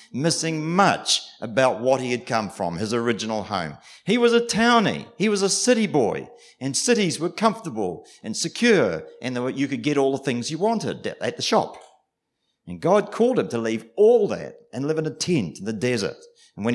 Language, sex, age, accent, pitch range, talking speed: English, male, 50-69, Australian, 110-185 Hz, 200 wpm